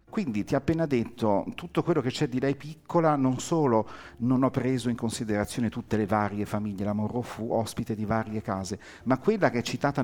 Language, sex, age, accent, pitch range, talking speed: Italian, male, 50-69, native, 110-145 Hz, 210 wpm